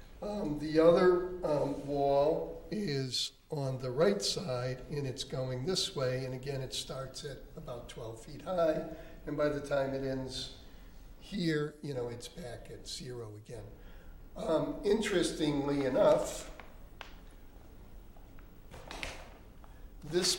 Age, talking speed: 60-79, 125 wpm